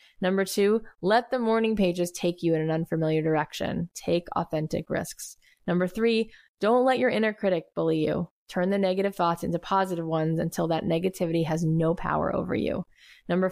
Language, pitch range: English, 170-215 Hz